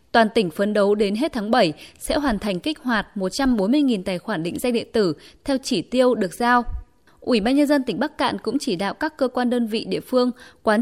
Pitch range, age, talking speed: 215-265 Hz, 20-39, 240 wpm